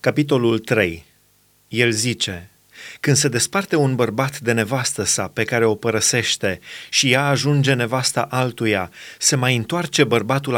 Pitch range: 125-160 Hz